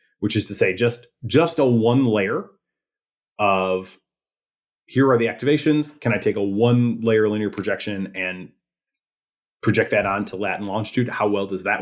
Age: 30-49